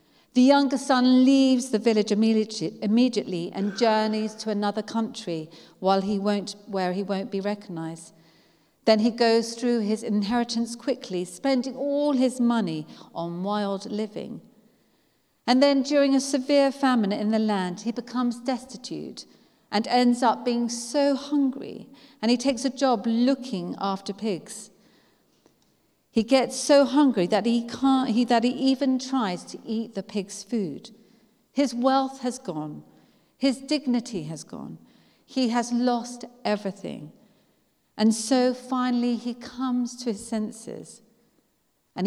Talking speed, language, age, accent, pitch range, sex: 135 wpm, English, 40-59, British, 200-250 Hz, female